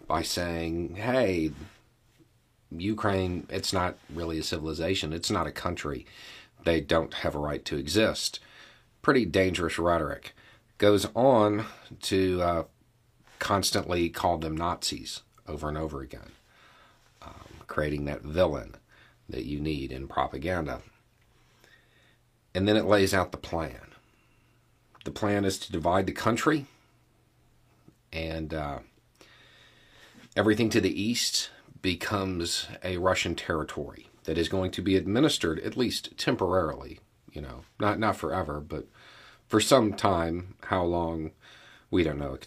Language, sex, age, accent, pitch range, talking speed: English, male, 40-59, American, 80-105 Hz, 130 wpm